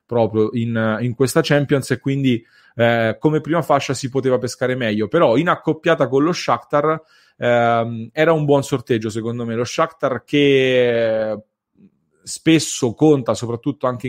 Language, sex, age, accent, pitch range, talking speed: English, male, 30-49, Italian, 105-130 Hz, 150 wpm